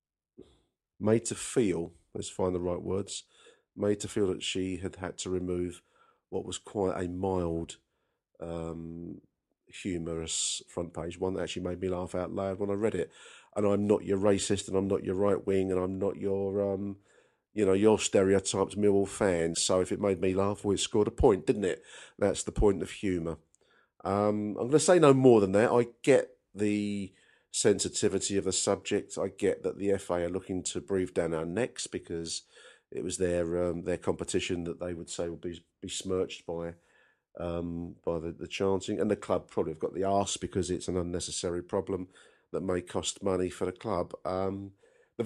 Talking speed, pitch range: 200 wpm, 90-100 Hz